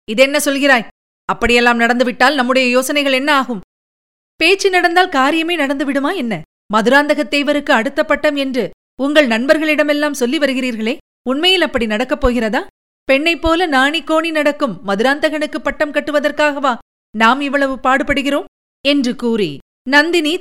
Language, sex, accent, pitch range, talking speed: Tamil, female, native, 230-295 Hz, 110 wpm